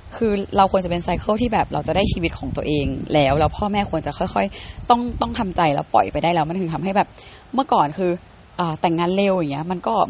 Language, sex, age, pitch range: Thai, female, 20-39, 165-210 Hz